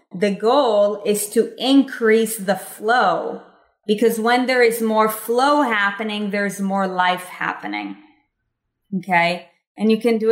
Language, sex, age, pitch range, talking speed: English, female, 20-39, 170-220 Hz, 135 wpm